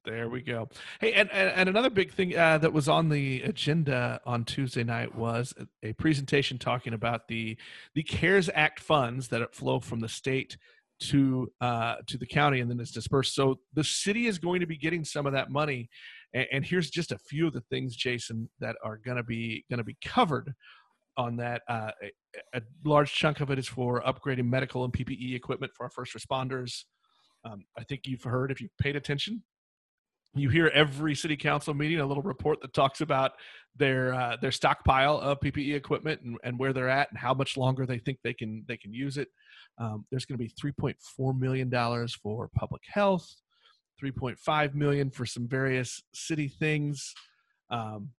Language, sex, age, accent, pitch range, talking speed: English, male, 40-59, American, 120-150 Hz, 195 wpm